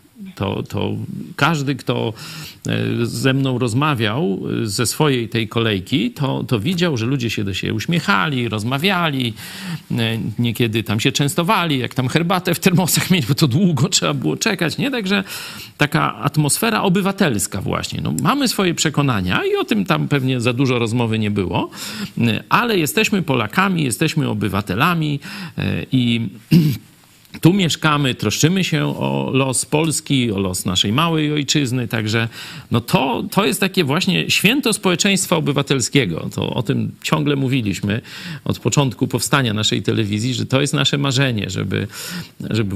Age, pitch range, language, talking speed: 40-59, 115-160 Hz, Polish, 145 wpm